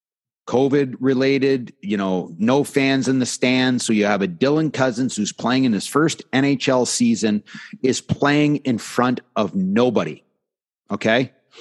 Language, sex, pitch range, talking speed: English, male, 125-155 Hz, 150 wpm